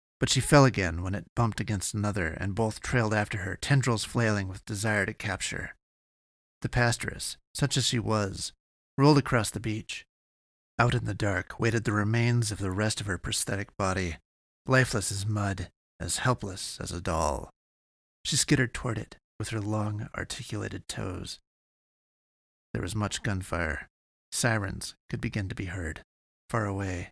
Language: English